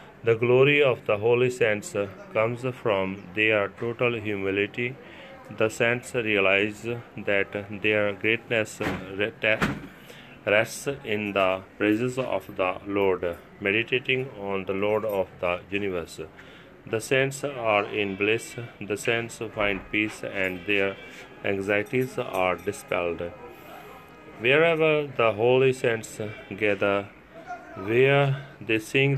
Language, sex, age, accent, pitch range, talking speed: English, male, 30-49, Indian, 105-125 Hz, 110 wpm